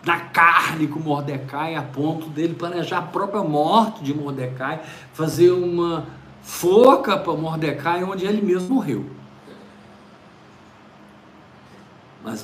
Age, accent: 50-69, Brazilian